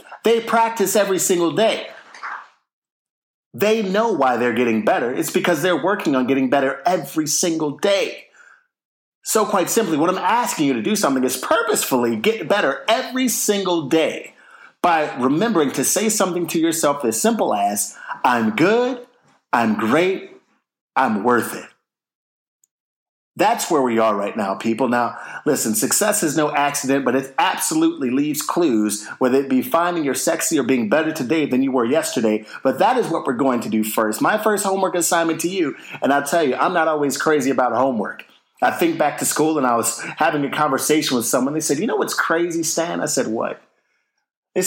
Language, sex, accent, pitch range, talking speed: English, male, American, 130-210 Hz, 185 wpm